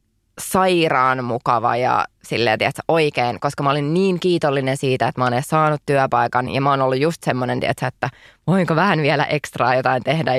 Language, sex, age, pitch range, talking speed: Finnish, female, 20-39, 135-175 Hz, 180 wpm